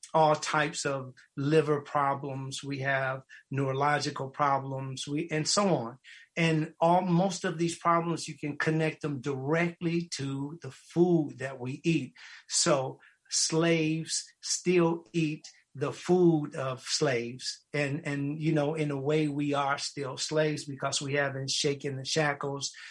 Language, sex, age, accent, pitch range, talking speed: English, male, 50-69, American, 135-155 Hz, 145 wpm